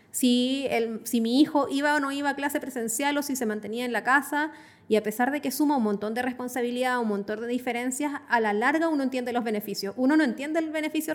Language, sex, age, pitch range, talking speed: Spanish, female, 20-39, 230-280 Hz, 235 wpm